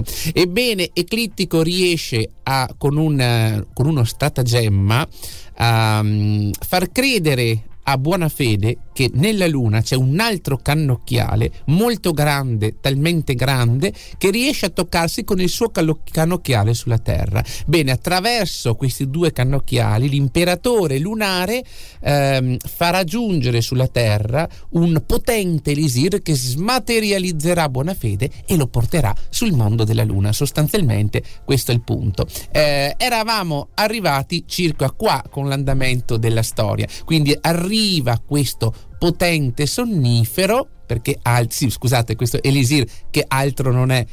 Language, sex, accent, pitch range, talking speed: Italian, male, native, 115-170 Hz, 120 wpm